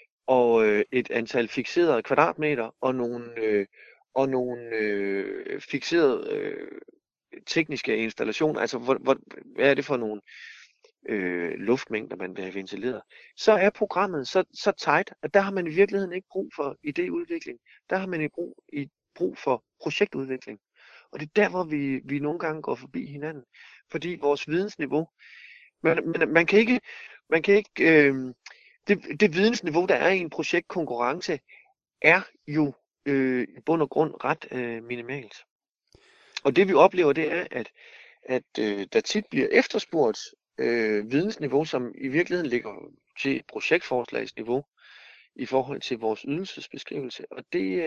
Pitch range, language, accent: 125-195 Hz, Danish, native